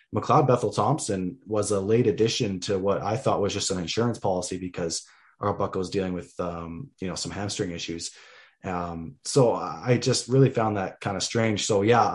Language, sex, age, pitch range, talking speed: English, male, 20-39, 95-115 Hz, 200 wpm